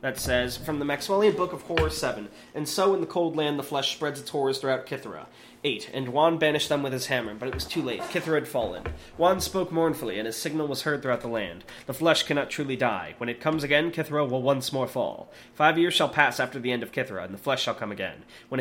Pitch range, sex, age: 120-155 Hz, male, 20-39